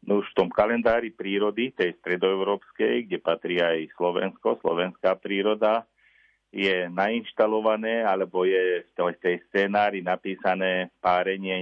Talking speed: 120 wpm